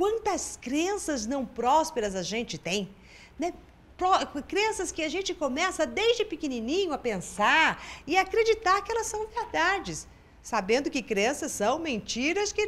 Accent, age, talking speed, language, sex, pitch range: Brazilian, 50-69, 135 wpm, Portuguese, female, 235-375 Hz